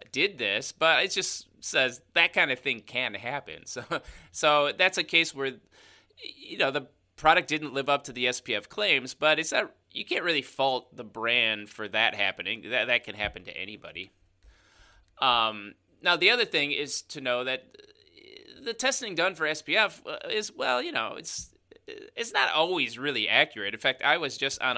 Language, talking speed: English, 185 wpm